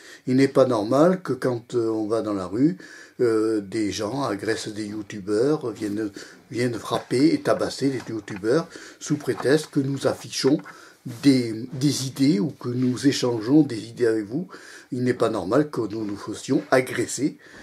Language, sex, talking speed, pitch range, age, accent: French, male, 165 wpm, 105-135 Hz, 50-69, French